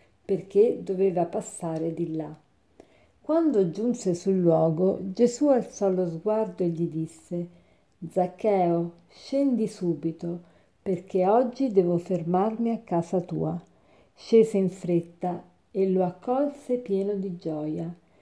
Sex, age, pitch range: female, 50-69, 175-215 Hz